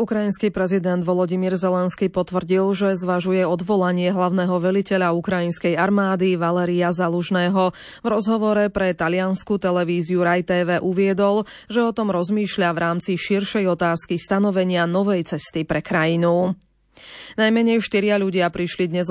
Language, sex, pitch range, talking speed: Slovak, female, 175-200 Hz, 120 wpm